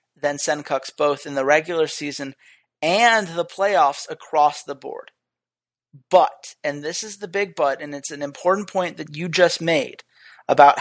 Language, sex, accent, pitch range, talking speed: English, male, American, 145-215 Hz, 165 wpm